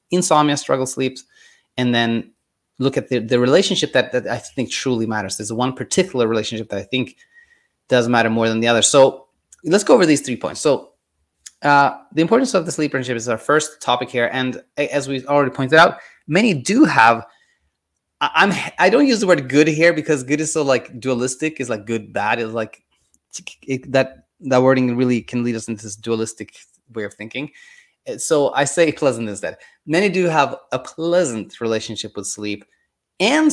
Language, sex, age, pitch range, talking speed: English, male, 20-39, 110-150 Hz, 195 wpm